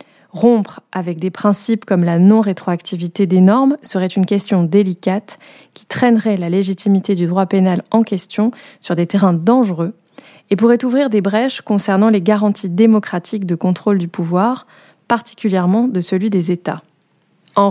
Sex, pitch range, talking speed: female, 185-225 Hz, 155 wpm